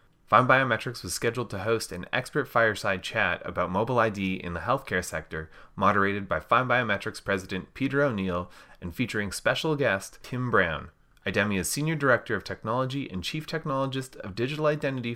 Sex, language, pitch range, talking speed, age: male, English, 95-130 Hz, 160 wpm, 30-49